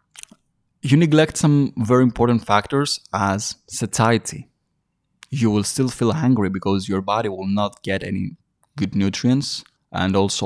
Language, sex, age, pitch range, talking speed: English, male, 20-39, 100-125 Hz, 140 wpm